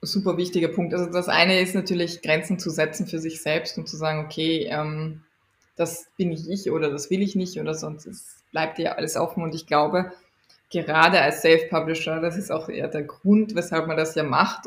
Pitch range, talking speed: 160-190 Hz, 215 wpm